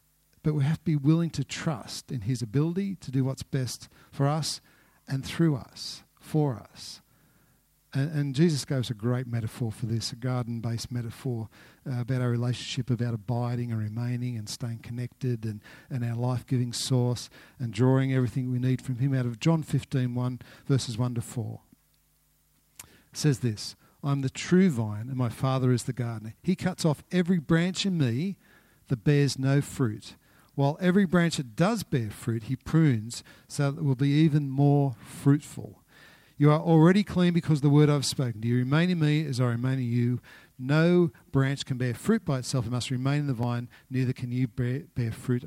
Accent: Australian